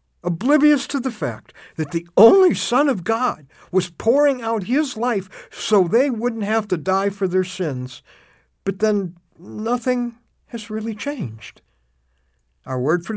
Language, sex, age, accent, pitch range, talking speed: English, male, 60-79, American, 150-220 Hz, 150 wpm